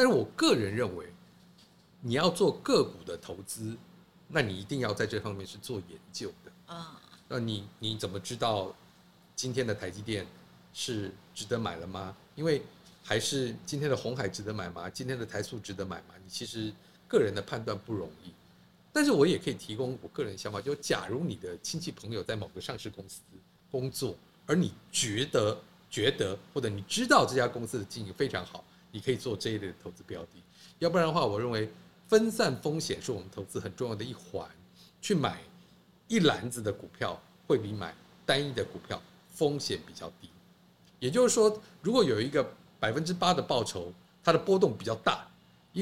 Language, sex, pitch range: Chinese, male, 100-145 Hz